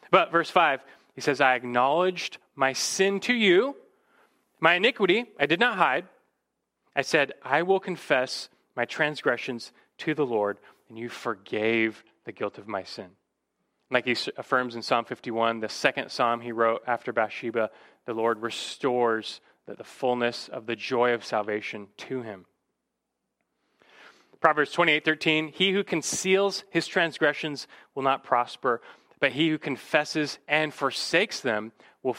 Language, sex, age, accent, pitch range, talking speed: English, male, 30-49, American, 120-175 Hz, 145 wpm